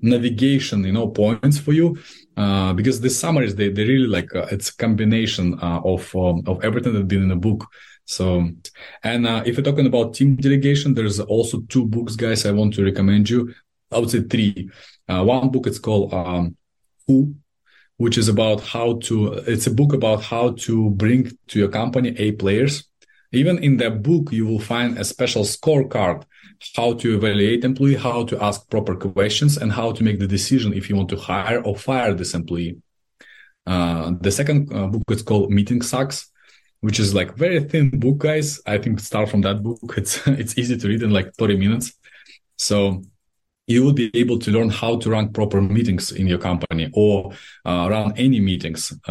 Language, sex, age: English, male, 20-39